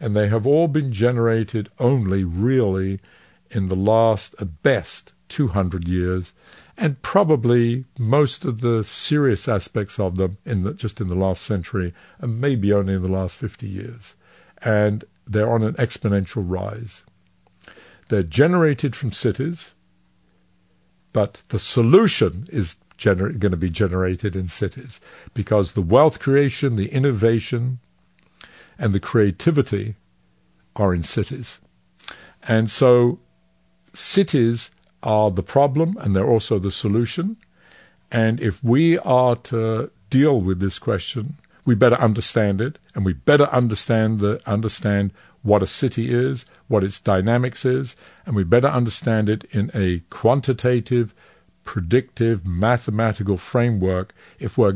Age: 60-79